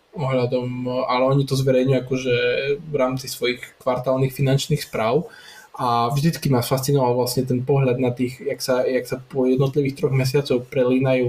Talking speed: 160 wpm